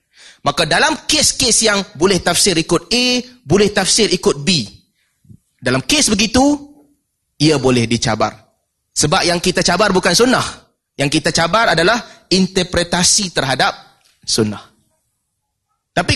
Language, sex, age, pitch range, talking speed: Malay, male, 30-49, 160-225 Hz, 120 wpm